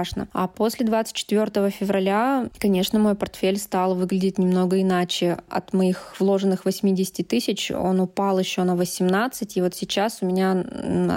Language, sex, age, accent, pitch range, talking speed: Russian, female, 20-39, native, 185-210 Hz, 140 wpm